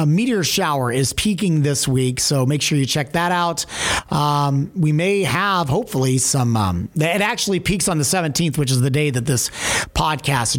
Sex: male